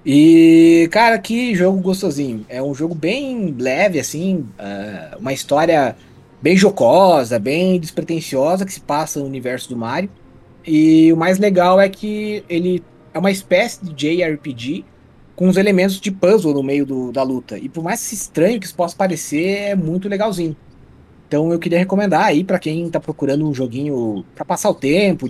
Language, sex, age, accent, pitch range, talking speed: Portuguese, male, 20-39, Brazilian, 135-195 Hz, 170 wpm